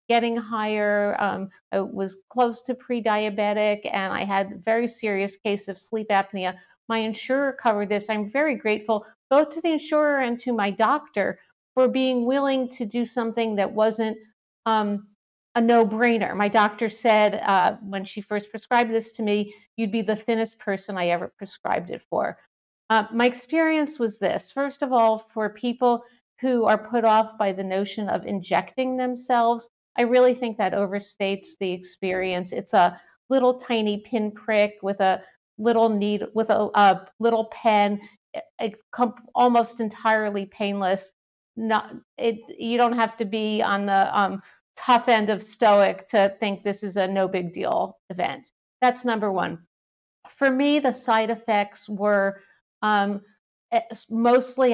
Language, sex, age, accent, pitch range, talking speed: English, female, 50-69, American, 205-235 Hz, 160 wpm